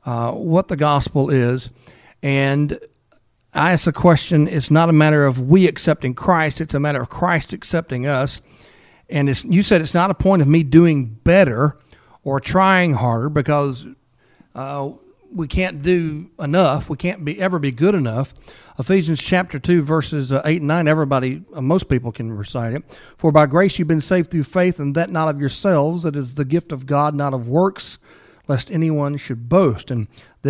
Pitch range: 135-170 Hz